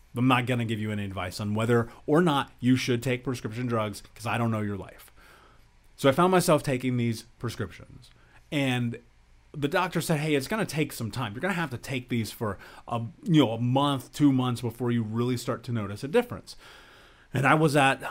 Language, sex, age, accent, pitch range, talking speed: English, male, 30-49, American, 115-145 Hz, 225 wpm